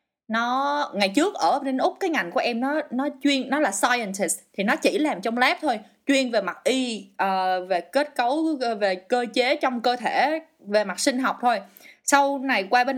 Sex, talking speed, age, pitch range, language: female, 215 wpm, 20-39, 200-290 Hz, Vietnamese